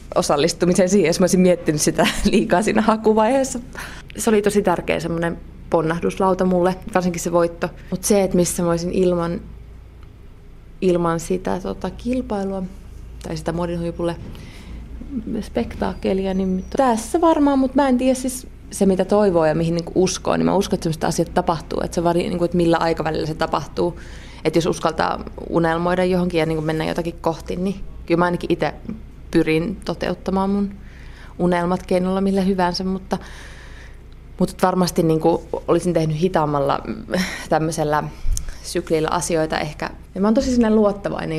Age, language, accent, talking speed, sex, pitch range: 20-39, Finnish, native, 150 wpm, female, 165-195 Hz